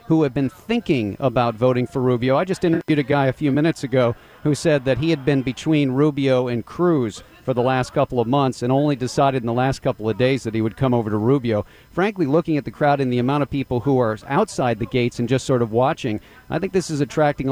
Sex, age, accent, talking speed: male, 50-69, American, 255 wpm